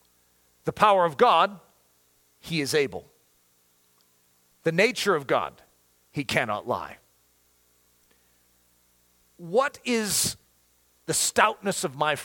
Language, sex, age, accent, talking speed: English, male, 40-59, American, 100 wpm